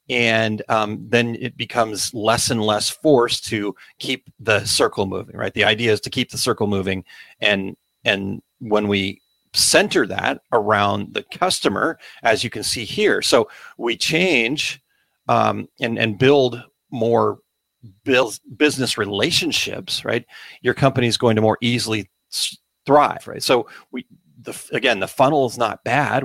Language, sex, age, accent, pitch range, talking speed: English, male, 40-59, American, 105-125 Hz, 150 wpm